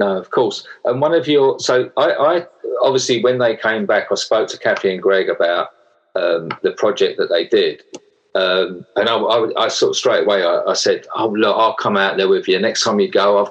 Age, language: 40-59, English